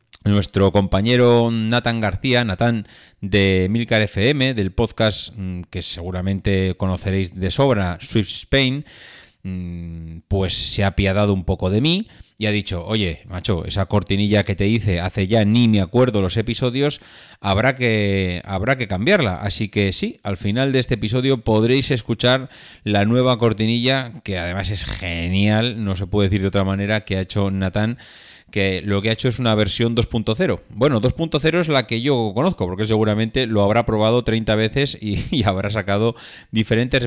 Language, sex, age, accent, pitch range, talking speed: Spanish, male, 30-49, Spanish, 100-125 Hz, 165 wpm